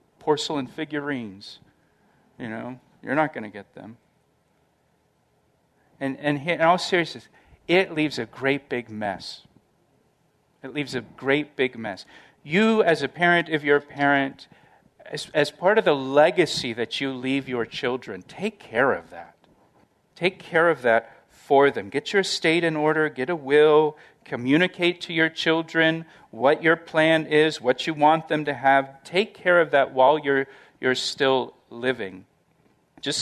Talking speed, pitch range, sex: 160 wpm, 135-165 Hz, male